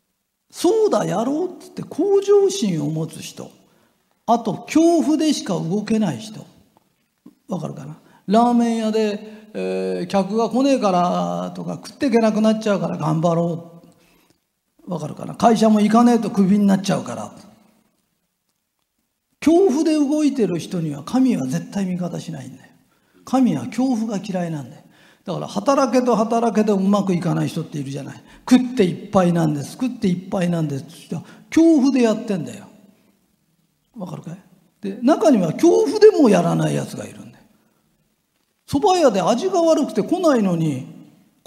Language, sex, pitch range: Japanese, male, 180-255 Hz